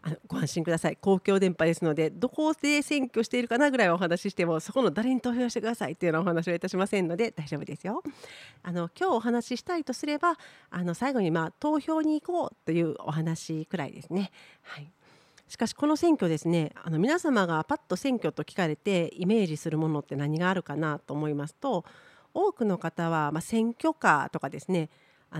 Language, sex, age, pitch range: Japanese, female, 40-59, 160-235 Hz